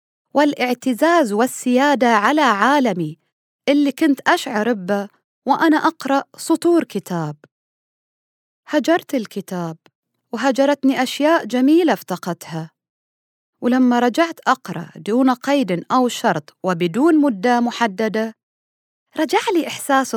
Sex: female